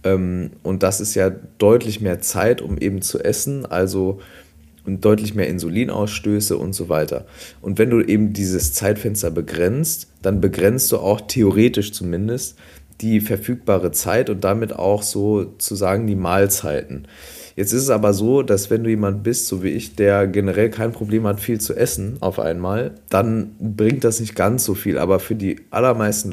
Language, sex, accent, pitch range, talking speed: German, male, German, 95-110 Hz, 170 wpm